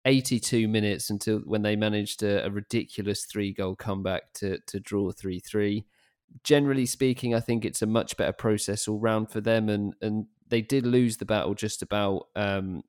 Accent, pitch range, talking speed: British, 100-110 Hz, 175 wpm